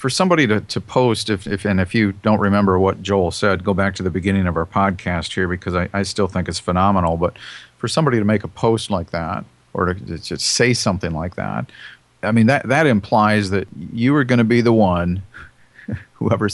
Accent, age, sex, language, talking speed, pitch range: American, 50-69, male, English, 220 wpm, 95-115 Hz